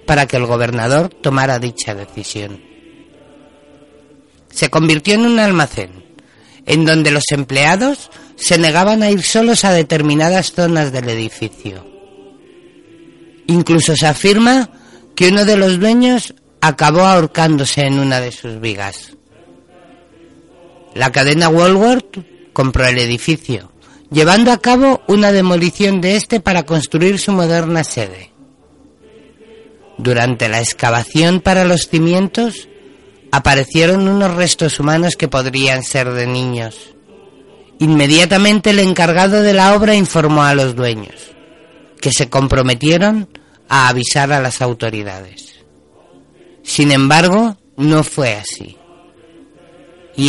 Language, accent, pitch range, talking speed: Spanish, Spanish, 130-190 Hz, 115 wpm